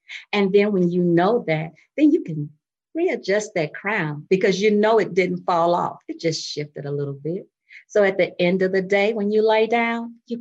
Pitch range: 175-240 Hz